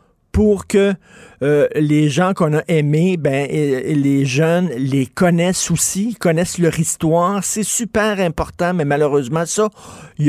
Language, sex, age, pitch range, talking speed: French, male, 50-69, 135-175 Hz, 145 wpm